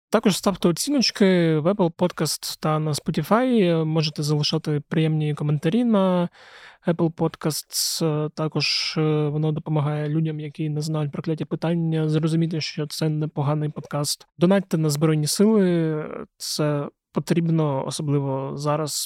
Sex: male